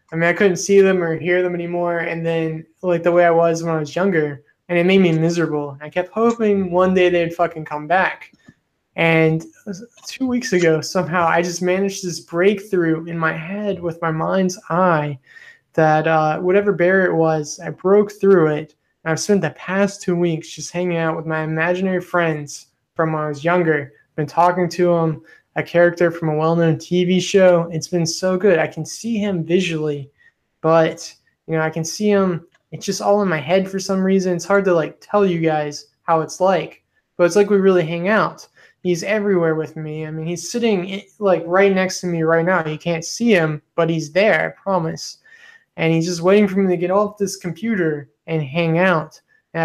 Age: 20-39